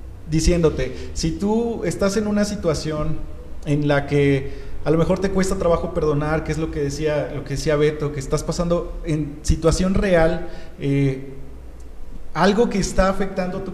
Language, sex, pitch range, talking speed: Spanish, male, 160-195 Hz, 165 wpm